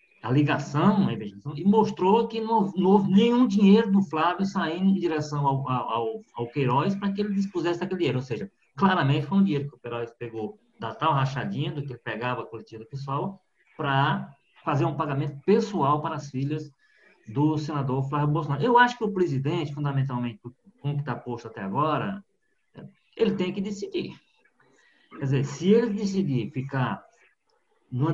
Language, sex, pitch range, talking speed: Portuguese, male, 130-195 Hz, 170 wpm